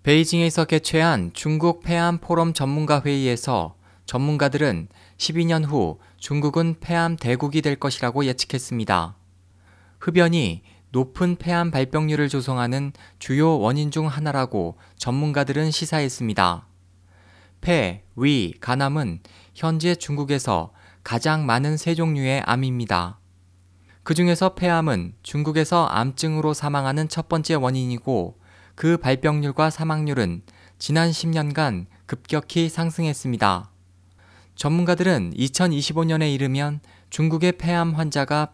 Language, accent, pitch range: Korean, native, 95-160 Hz